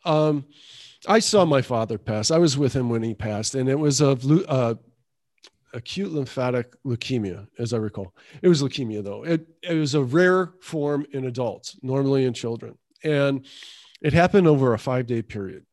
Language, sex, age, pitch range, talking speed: English, male, 40-59, 125-160 Hz, 180 wpm